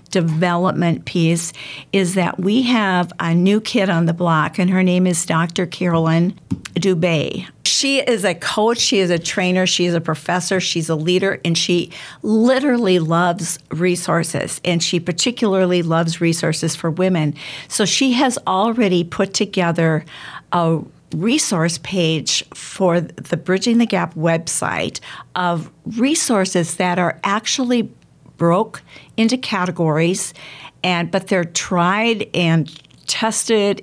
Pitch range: 165-200 Hz